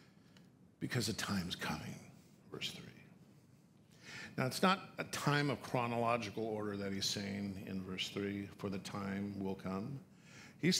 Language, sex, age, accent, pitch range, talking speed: English, male, 50-69, American, 95-130 Hz, 145 wpm